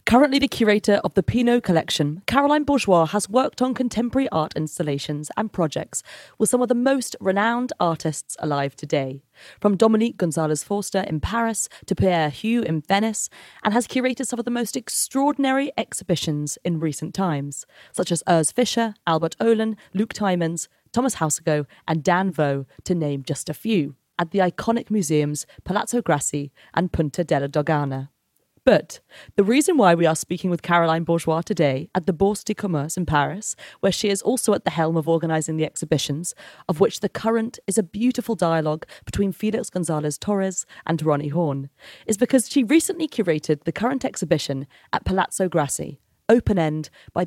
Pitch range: 155-225 Hz